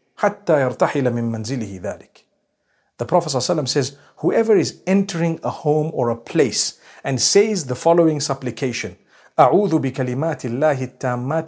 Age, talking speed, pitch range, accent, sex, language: 50-69, 125 wpm, 130-195 Hz, South African, male, English